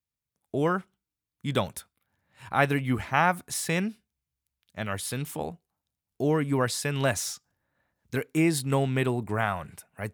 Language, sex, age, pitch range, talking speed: English, male, 20-39, 95-125 Hz, 120 wpm